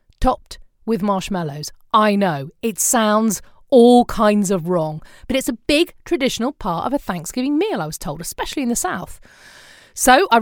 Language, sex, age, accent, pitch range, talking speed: English, female, 40-59, British, 180-255 Hz, 175 wpm